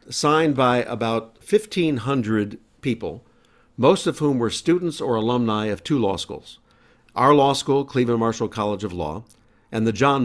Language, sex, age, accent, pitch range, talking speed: English, male, 50-69, American, 105-130 Hz, 160 wpm